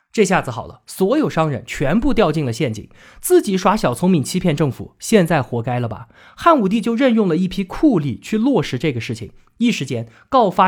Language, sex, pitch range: Chinese, male, 130-215 Hz